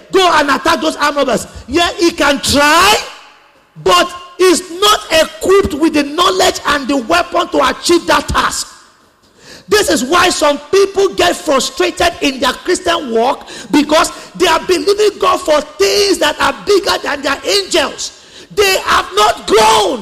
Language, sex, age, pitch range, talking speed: English, male, 40-59, 295-365 Hz, 155 wpm